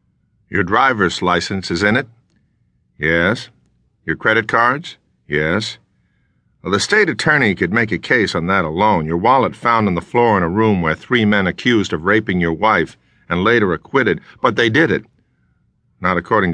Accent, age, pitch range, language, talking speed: American, 50-69, 90-120 Hz, English, 175 wpm